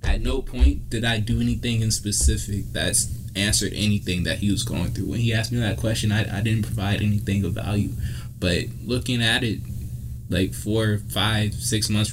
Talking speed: 195 wpm